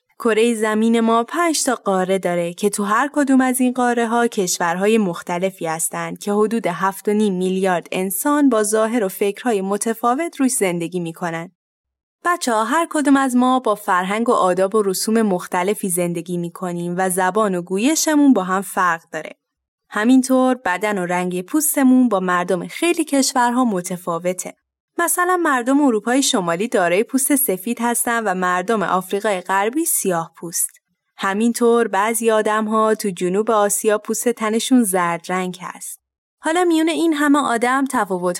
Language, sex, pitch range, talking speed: Persian, female, 185-255 Hz, 150 wpm